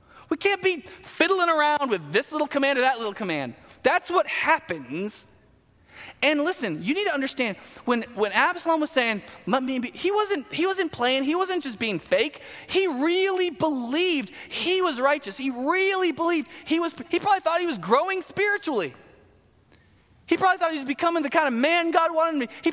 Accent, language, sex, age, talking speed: American, English, male, 20-39, 190 wpm